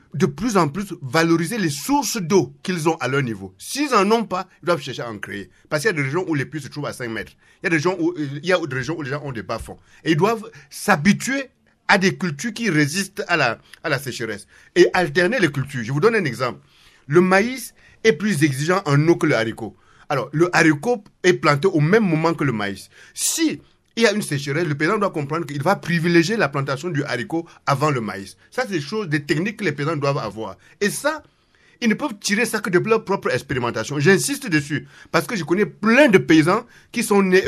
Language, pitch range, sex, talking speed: English, 145-200 Hz, male, 245 wpm